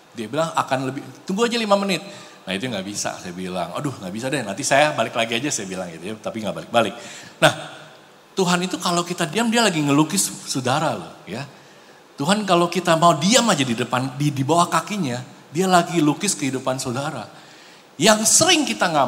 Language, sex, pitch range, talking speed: Indonesian, male, 150-200 Hz, 200 wpm